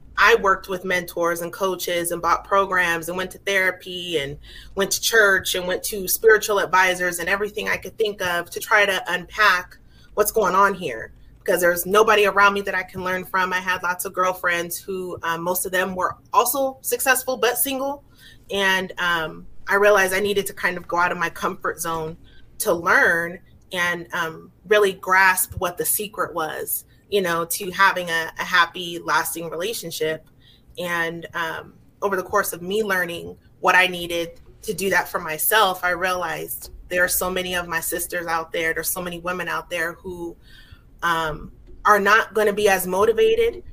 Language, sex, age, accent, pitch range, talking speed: English, female, 30-49, American, 170-200 Hz, 190 wpm